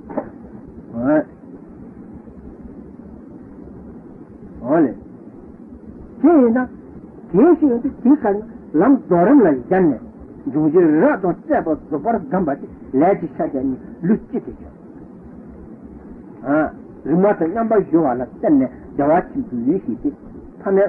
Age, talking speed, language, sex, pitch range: 60-79, 35 wpm, Italian, male, 210-295 Hz